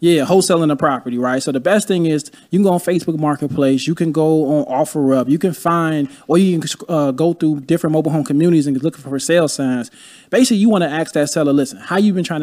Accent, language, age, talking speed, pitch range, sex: American, English, 20-39, 245 wpm, 150-195 Hz, male